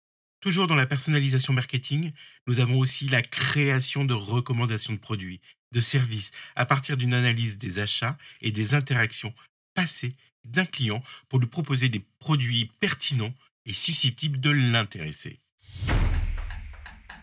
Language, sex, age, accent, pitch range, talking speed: French, male, 50-69, French, 110-140 Hz, 130 wpm